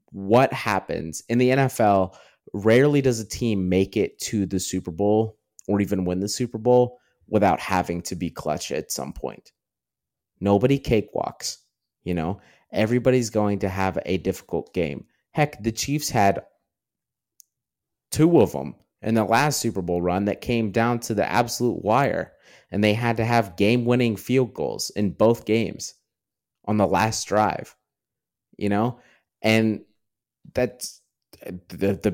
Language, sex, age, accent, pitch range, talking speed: English, male, 30-49, American, 95-115 Hz, 155 wpm